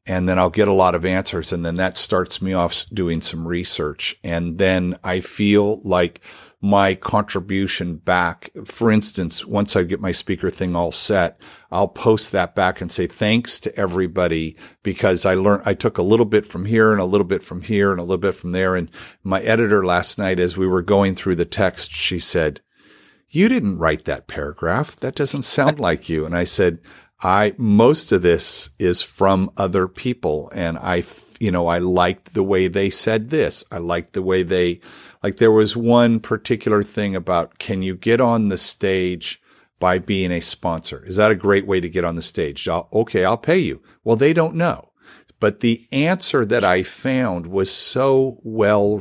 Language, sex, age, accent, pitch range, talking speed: English, male, 50-69, American, 90-105 Hz, 200 wpm